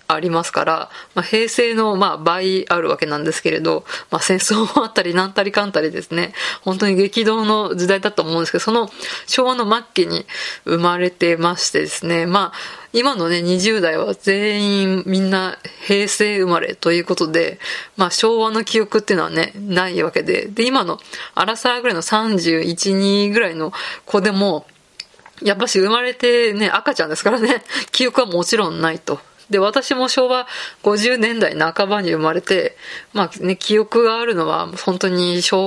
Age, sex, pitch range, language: 20-39, female, 180-225 Hz, Japanese